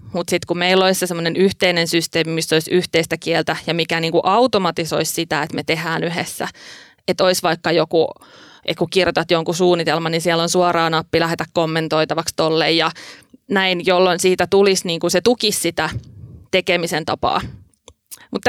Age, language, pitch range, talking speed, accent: 30-49, Finnish, 165-190 Hz, 160 wpm, native